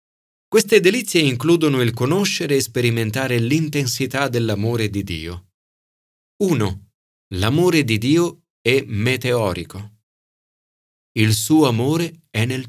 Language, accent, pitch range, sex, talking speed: Italian, native, 105-150 Hz, male, 105 wpm